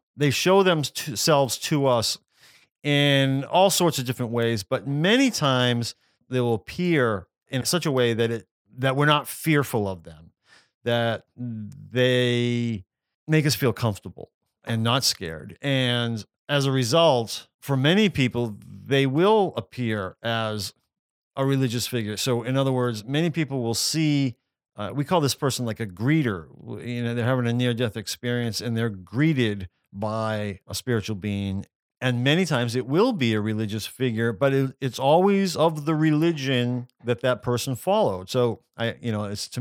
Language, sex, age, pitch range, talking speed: English, male, 40-59, 115-140 Hz, 165 wpm